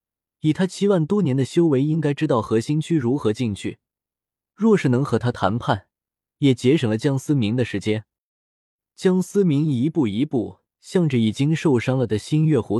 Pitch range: 115-165 Hz